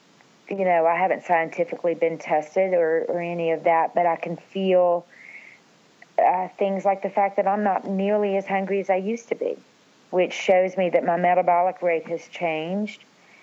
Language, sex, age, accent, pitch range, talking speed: English, female, 40-59, American, 170-200 Hz, 185 wpm